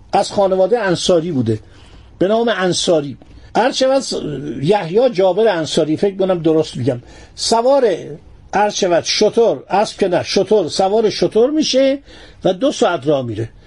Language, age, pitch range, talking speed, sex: Persian, 50-69, 170-230 Hz, 130 wpm, male